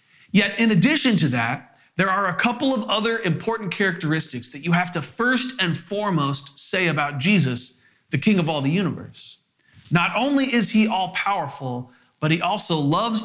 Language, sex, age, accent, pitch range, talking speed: English, male, 40-59, American, 135-195 Hz, 175 wpm